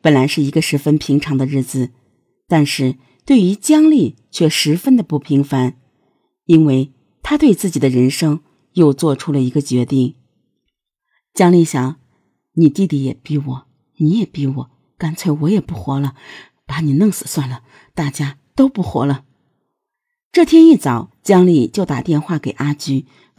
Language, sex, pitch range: Chinese, female, 140-210 Hz